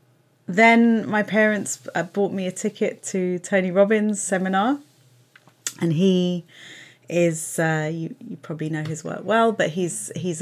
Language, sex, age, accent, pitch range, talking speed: English, female, 30-49, British, 150-210 Hz, 150 wpm